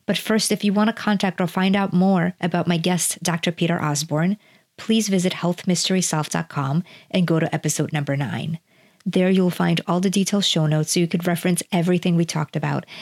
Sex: female